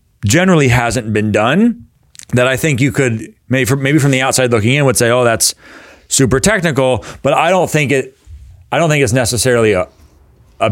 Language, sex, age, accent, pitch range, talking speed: English, male, 30-49, American, 105-135 Hz, 190 wpm